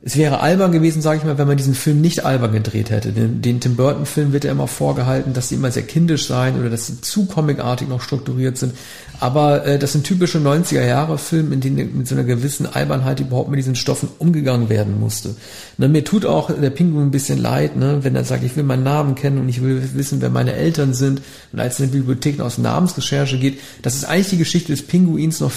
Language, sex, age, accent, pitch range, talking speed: German, male, 40-59, German, 125-145 Hz, 230 wpm